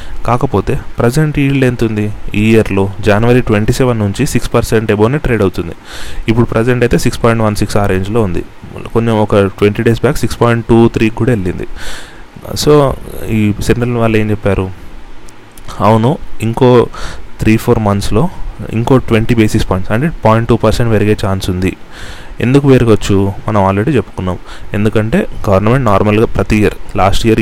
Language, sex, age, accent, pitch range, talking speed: Telugu, male, 30-49, native, 100-120 Hz, 135 wpm